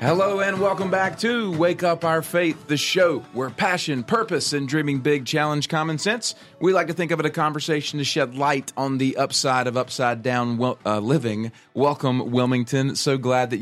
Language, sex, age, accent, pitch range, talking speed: English, male, 30-49, American, 120-145 Hz, 190 wpm